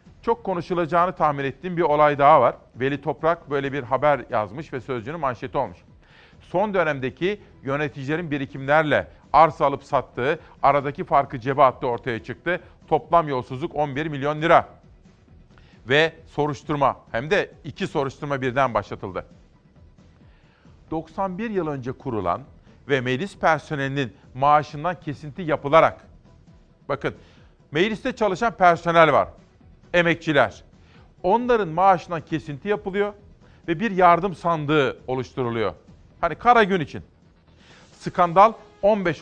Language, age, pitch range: Turkish, 40-59, 140-175 Hz